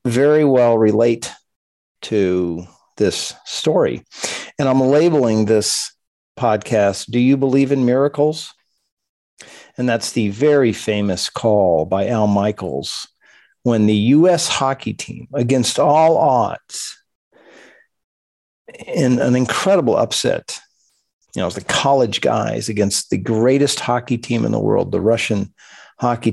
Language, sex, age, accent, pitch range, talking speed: English, male, 50-69, American, 110-145 Hz, 120 wpm